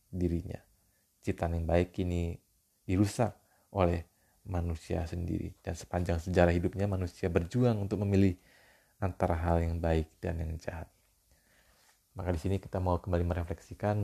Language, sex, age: Indonesian, male, 30-49